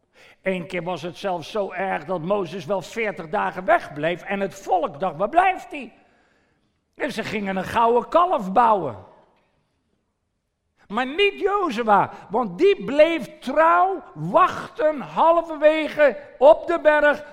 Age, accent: 50-69, Dutch